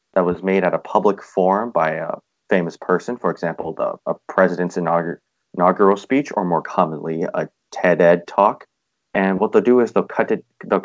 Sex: male